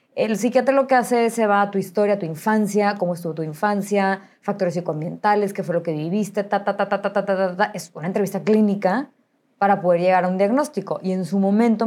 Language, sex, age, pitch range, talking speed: English, female, 20-39, 185-225 Hz, 240 wpm